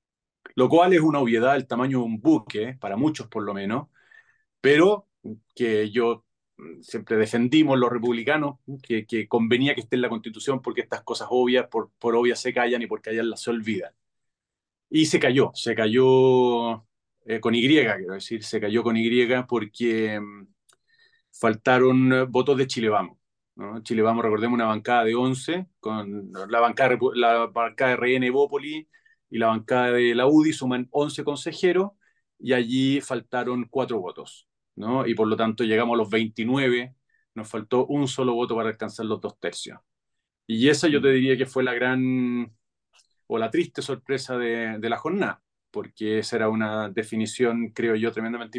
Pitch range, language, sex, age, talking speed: 115-130 Hz, Spanish, male, 30-49, 170 wpm